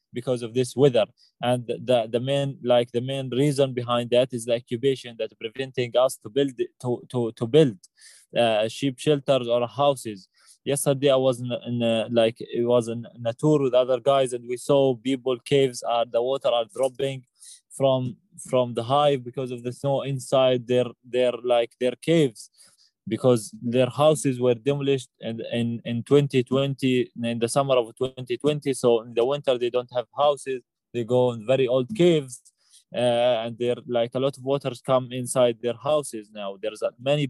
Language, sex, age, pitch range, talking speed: English, male, 20-39, 120-135 Hz, 185 wpm